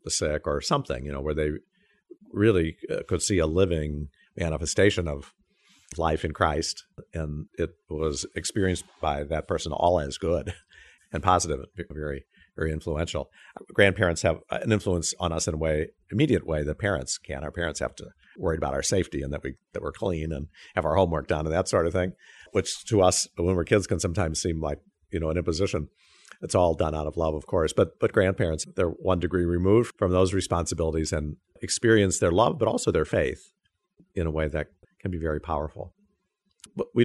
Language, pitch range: English, 75-95 Hz